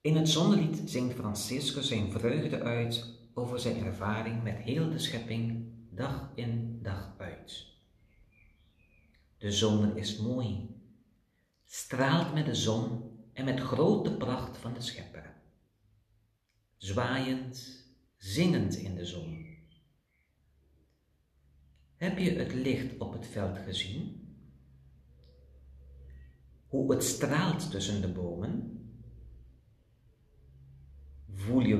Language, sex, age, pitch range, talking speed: Dutch, male, 50-69, 90-125 Hz, 105 wpm